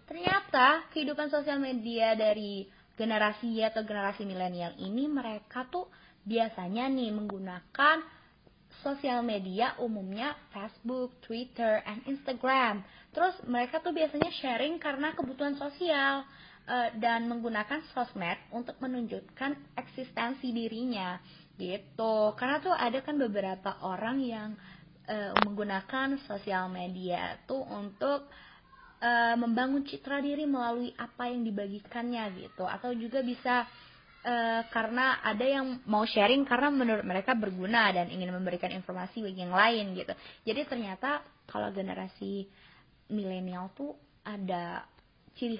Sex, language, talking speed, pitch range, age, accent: female, Indonesian, 115 wpm, 200-265 Hz, 20-39, native